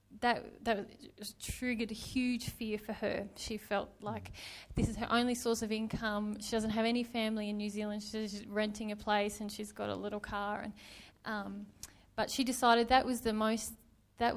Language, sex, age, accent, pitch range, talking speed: English, female, 20-39, Australian, 210-235 Hz, 190 wpm